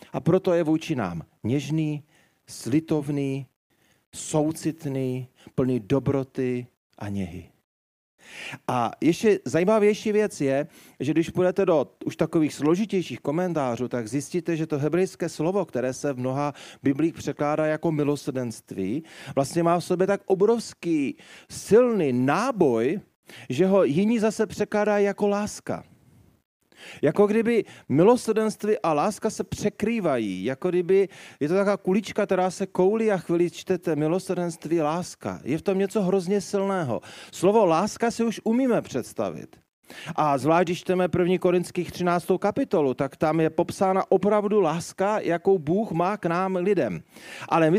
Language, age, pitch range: Czech, 40-59, 145-205 Hz